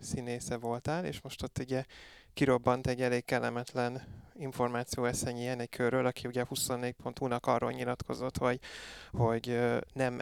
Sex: male